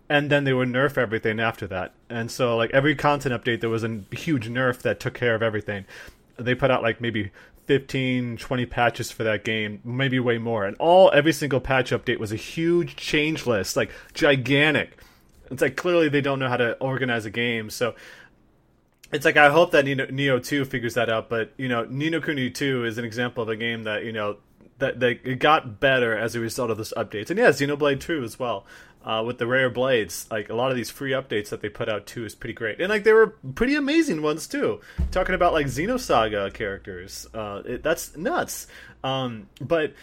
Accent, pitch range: American, 115-145 Hz